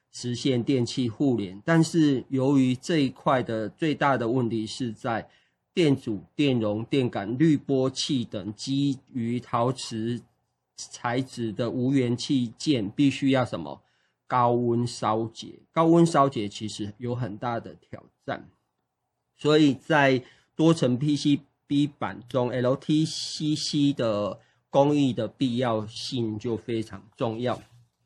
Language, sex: Chinese, male